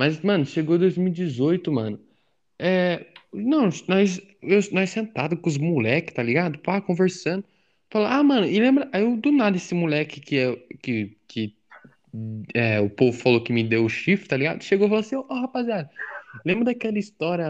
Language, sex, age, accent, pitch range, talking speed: Portuguese, male, 10-29, Brazilian, 160-235 Hz, 180 wpm